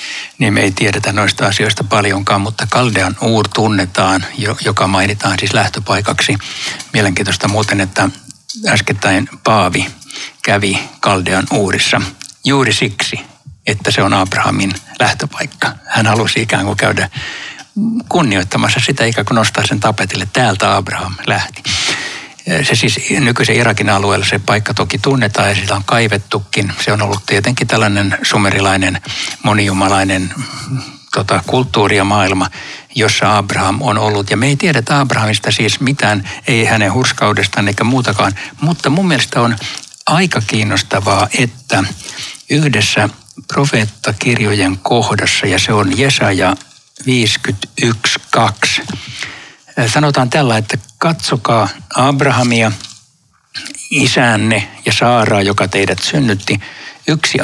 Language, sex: Finnish, male